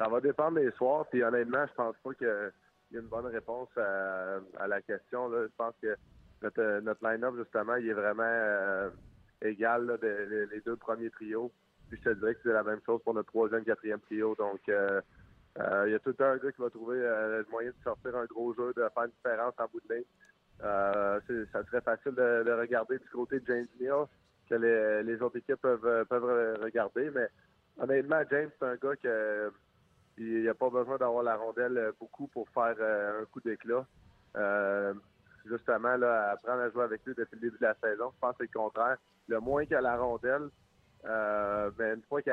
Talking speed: 220 wpm